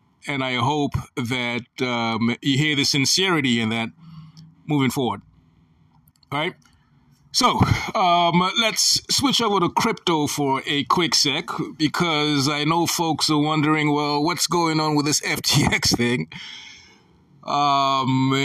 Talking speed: 135 wpm